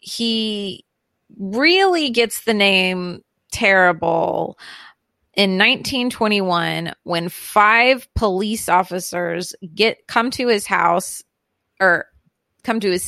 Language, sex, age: English, female, 30-49